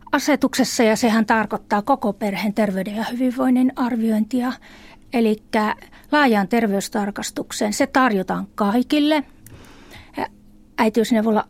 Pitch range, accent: 210-250 Hz, native